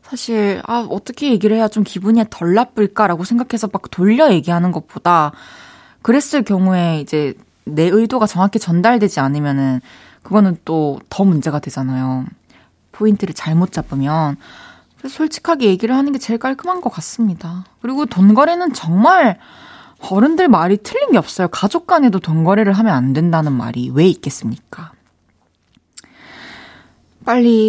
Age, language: 20-39, Korean